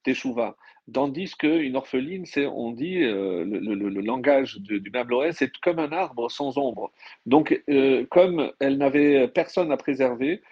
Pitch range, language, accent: 120-150 Hz, French, French